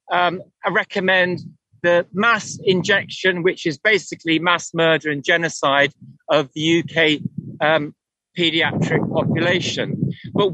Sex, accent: male, British